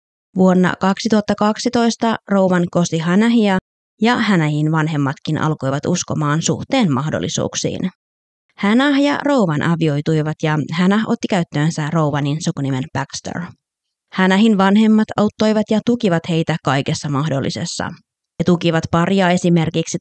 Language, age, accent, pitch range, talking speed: Finnish, 20-39, native, 160-215 Hz, 105 wpm